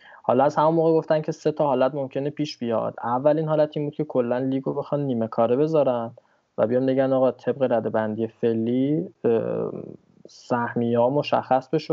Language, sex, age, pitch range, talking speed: Persian, male, 20-39, 115-145 Hz, 170 wpm